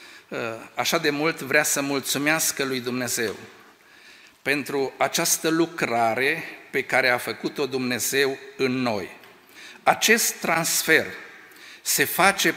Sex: male